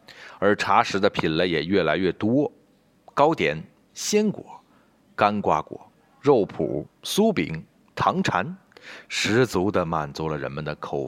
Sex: male